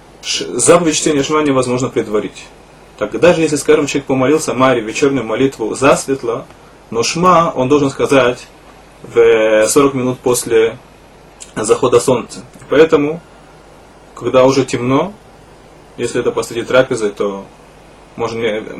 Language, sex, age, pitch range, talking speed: Russian, male, 20-39, 125-155 Hz, 120 wpm